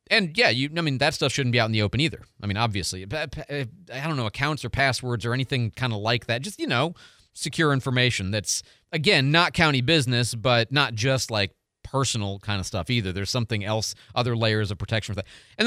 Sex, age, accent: male, 30-49, American